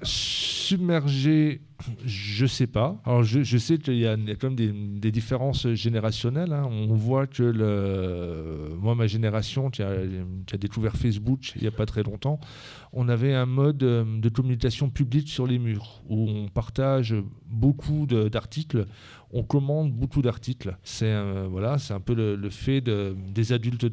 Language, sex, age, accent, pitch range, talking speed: French, male, 40-59, French, 110-140 Hz, 180 wpm